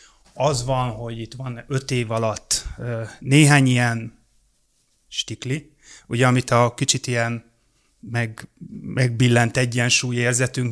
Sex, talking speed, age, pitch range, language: male, 110 wpm, 30-49, 115-130 Hz, Hungarian